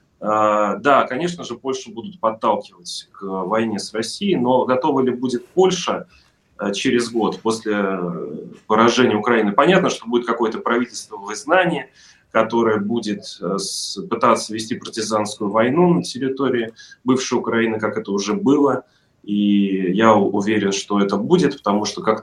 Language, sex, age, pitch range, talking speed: Russian, male, 30-49, 105-130 Hz, 135 wpm